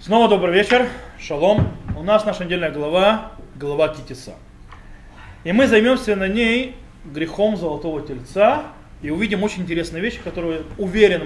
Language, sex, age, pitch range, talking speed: Russian, male, 20-39, 155-225 Hz, 140 wpm